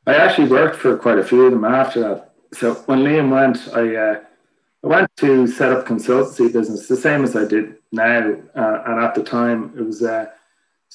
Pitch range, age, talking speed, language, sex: 105-130 Hz, 30-49, 220 wpm, English, male